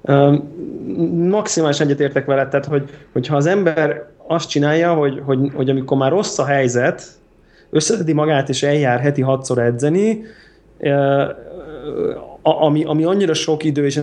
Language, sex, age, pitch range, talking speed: Hungarian, male, 20-39, 130-155 Hz, 145 wpm